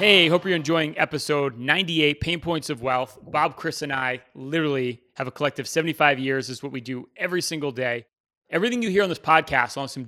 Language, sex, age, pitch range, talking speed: English, male, 30-49, 135-165 Hz, 220 wpm